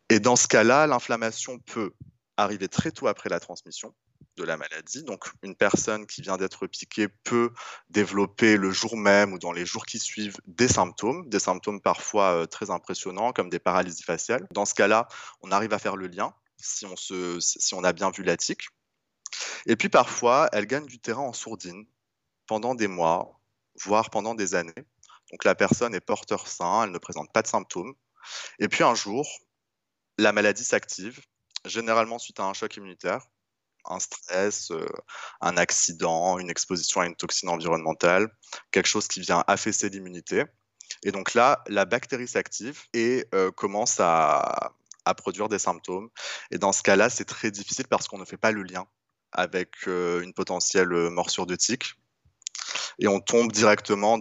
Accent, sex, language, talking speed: French, male, French, 180 wpm